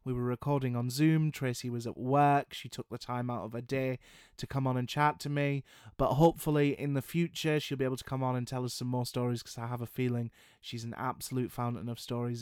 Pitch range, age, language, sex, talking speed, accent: 120-140 Hz, 20-39, English, male, 250 wpm, British